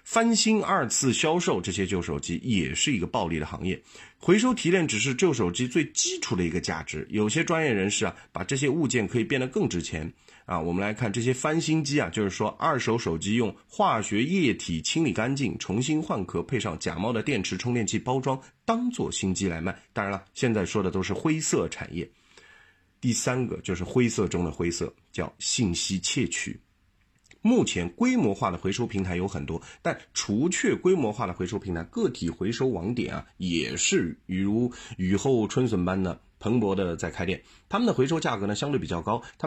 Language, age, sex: Chinese, 30-49, male